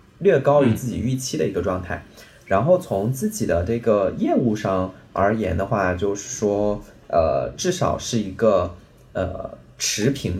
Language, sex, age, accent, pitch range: Chinese, male, 20-39, native, 105-135 Hz